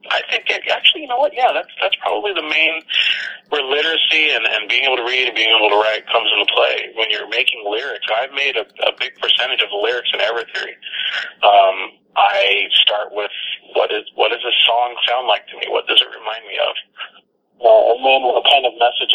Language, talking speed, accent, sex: English, 220 wpm, American, male